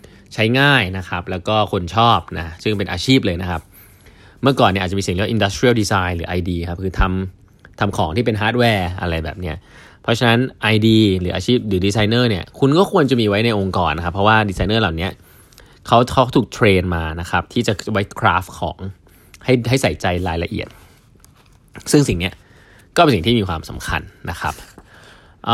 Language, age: Thai, 20-39